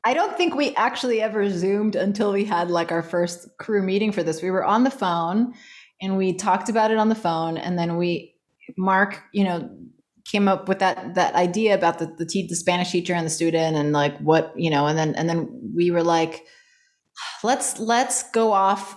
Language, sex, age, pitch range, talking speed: English, female, 20-39, 165-210 Hz, 215 wpm